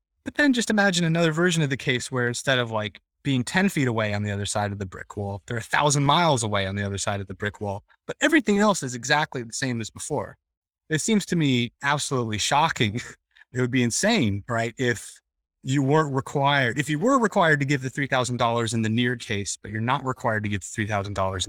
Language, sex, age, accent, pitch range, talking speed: English, male, 30-49, American, 105-140 Hz, 230 wpm